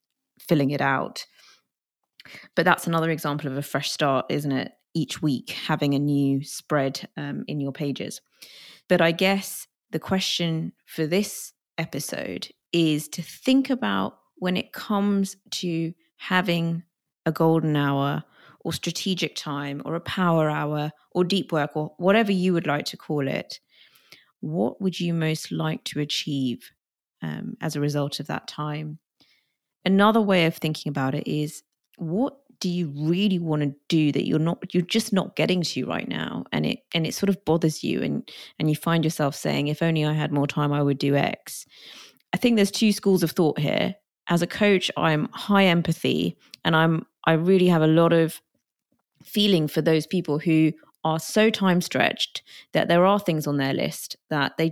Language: English